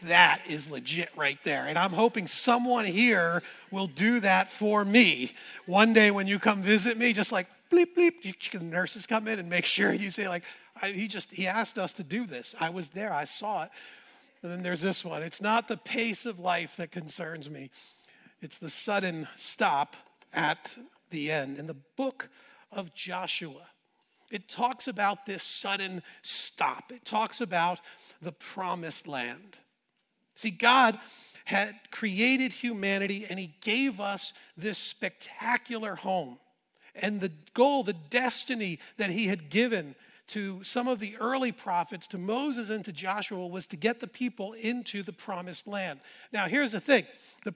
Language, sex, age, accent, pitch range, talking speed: English, male, 40-59, American, 185-230 Hz, 170 wpm